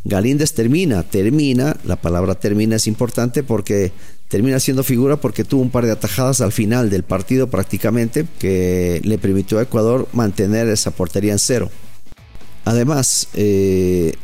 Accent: Mexican